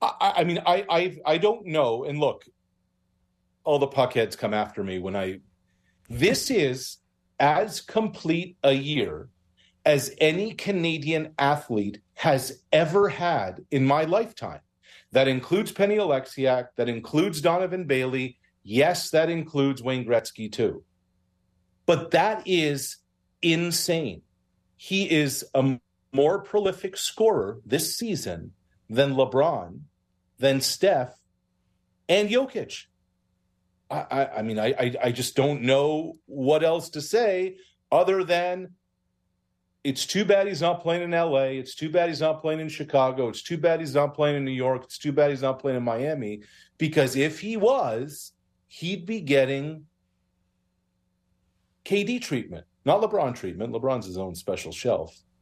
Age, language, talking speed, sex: 40-59, English, 140 wpm, male